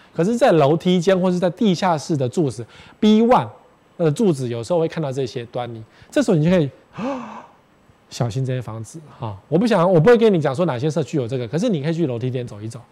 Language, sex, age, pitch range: Chinese, male, 20-39, 125-180 Hz